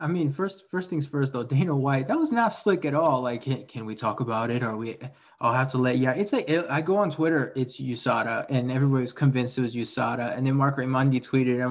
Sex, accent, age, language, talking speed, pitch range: male, American, 20-39, English, 255 wpm, 125-155 Hz